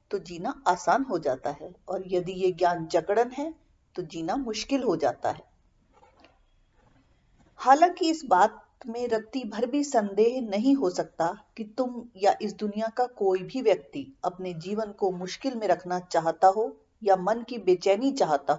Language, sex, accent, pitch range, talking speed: Hindi, female, native, 175-225 Hz, 165 wpm